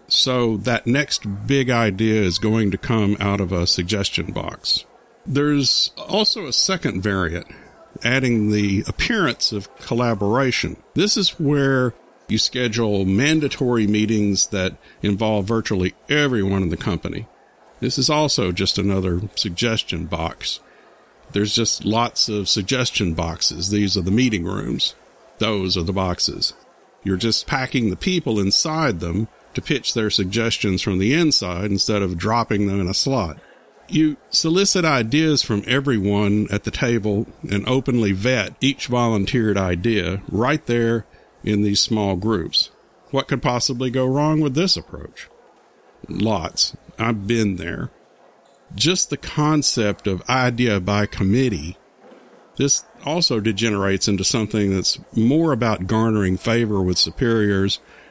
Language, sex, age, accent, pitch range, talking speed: English, male, 50-69, American, 100-130 Hz, 135 wpm